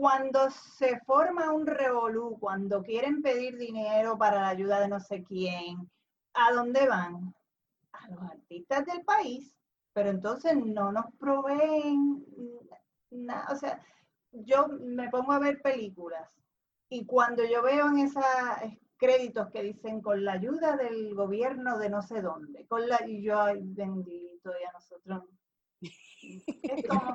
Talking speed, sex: 150 wpm, female